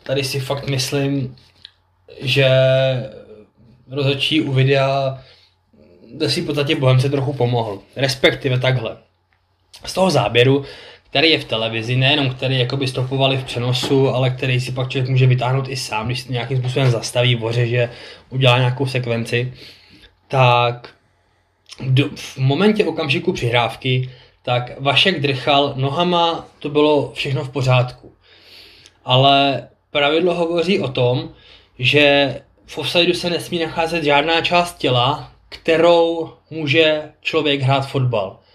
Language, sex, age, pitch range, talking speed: Czech, male, 20-39, 125-145 Hz, 130 wpm